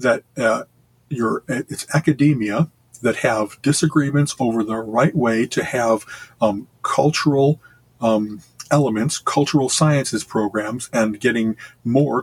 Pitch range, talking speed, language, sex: 110-145 Hz, 120 wpm, English, male